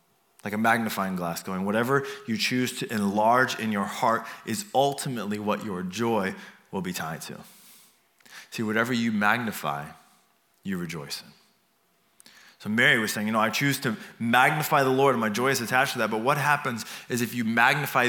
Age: 20-39